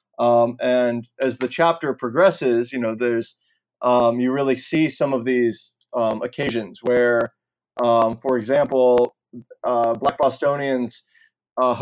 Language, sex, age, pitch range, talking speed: English, male, 20-39, 120-140 Hz, 130 wpm